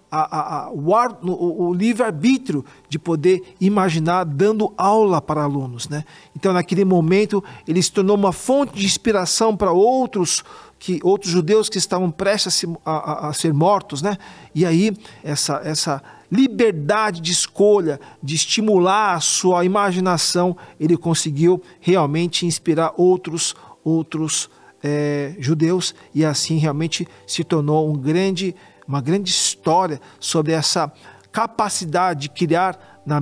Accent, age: Brazilian, 40-59